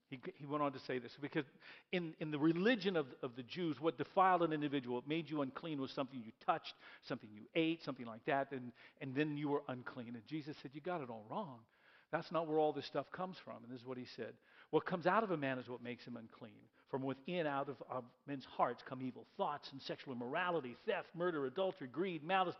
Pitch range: 130-180 Hz